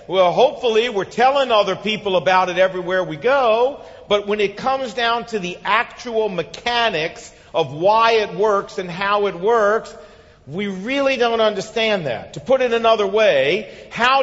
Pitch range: 180-230 Hz